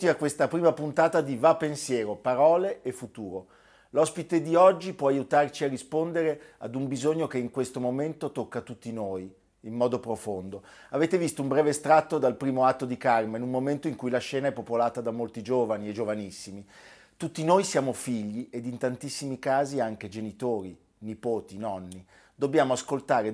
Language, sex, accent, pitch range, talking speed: Italian, male, native, 110-145 Hz, 175 wpm